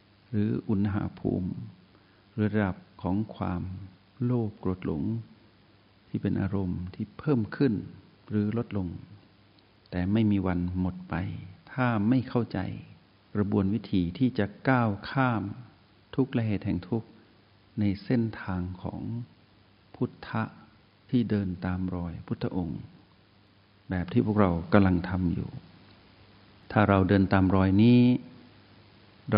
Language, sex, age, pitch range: Thai, male, 60-79, 95-110 Hz